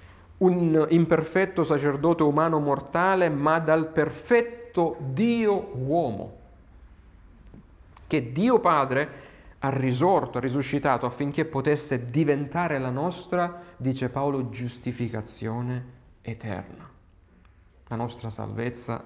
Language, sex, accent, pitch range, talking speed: Italian, male, native, 125-170 Hz, 90 wpm